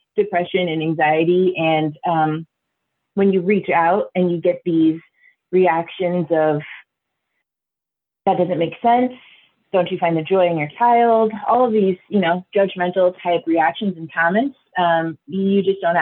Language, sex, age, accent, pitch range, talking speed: English, female, 20-39, American, 160-190 Hz, 155 wpm